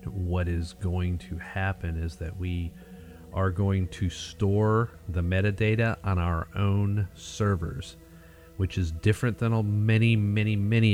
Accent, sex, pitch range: American, male, 90-105 Hz